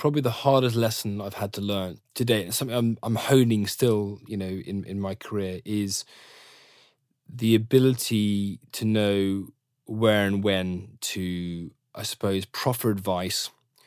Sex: male